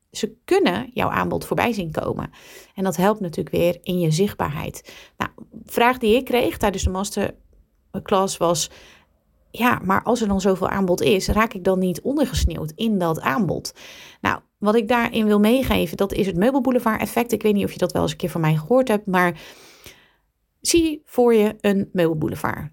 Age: 30-49